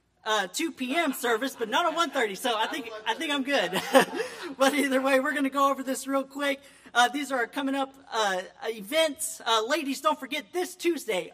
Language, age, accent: English, 40-59, American